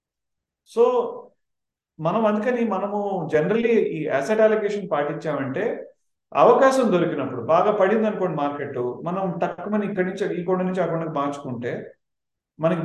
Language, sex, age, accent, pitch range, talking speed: Telugu, male, 40-59, native, 140-200 Hz, 115 wpm